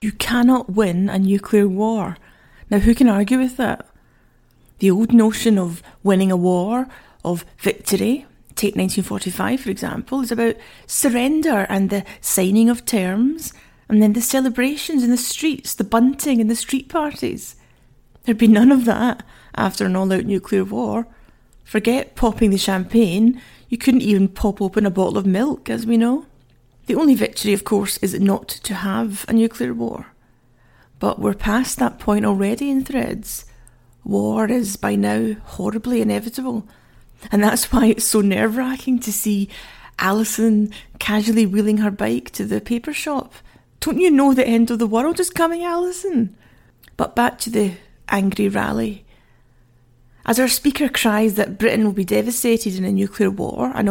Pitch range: 195-245 Hz